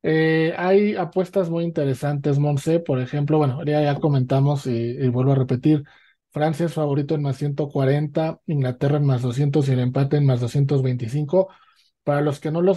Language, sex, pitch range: Spanish, male, 135-165 Hz